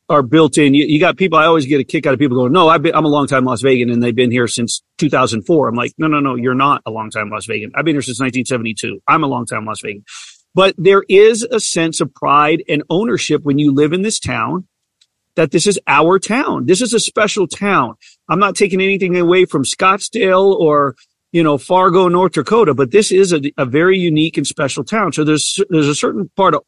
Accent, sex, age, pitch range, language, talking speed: American, male, 40-59, 145-190 Hz, English, 245 wpm